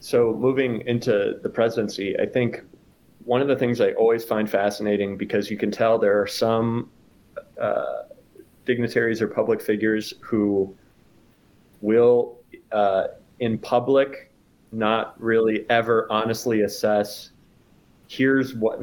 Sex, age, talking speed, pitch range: male, 30-49, 125 wpm, 100-120 Hz